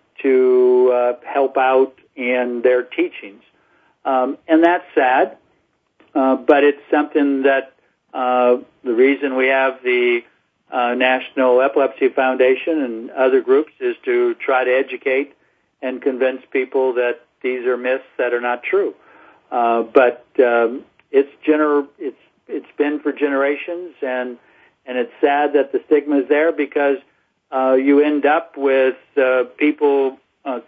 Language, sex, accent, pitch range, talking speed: English, male, American, 130-150 Hz, 145 wpm